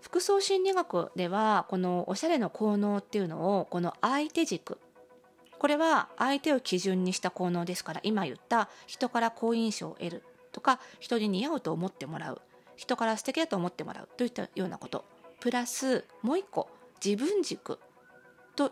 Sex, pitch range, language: female, 185-270 Hz, Japanese